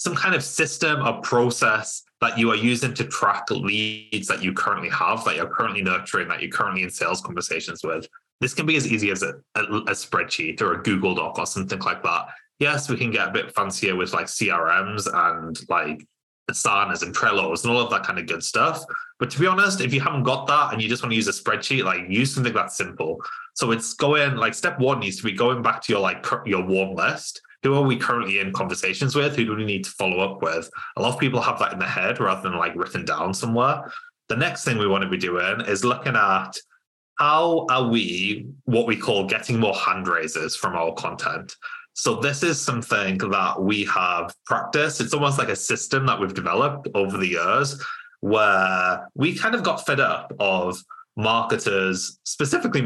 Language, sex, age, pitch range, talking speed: English, male, 20-39, 105-150 Hz, 220 wpm